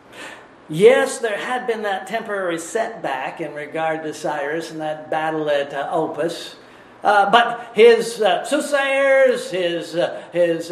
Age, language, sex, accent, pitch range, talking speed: 50-69, English, male, American, 195-270 Hz, 140 wpm